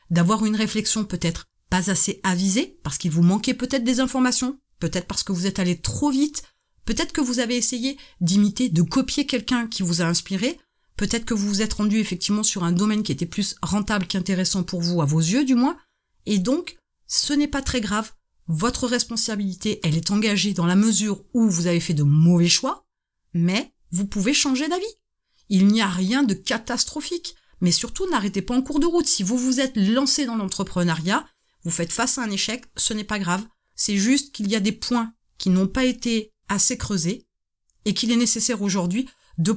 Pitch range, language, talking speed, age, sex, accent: 190-255 Hz, French, 205 wpm, 30-49, female, French